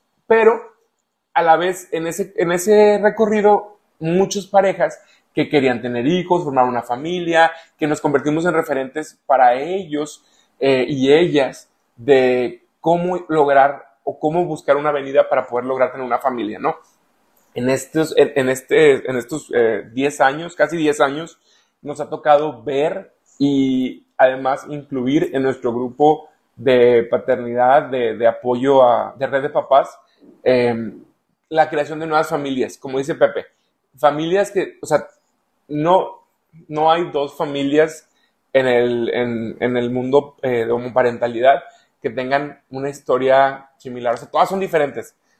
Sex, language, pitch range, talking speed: male, Spanish, 130-165 Hz, 145 wpm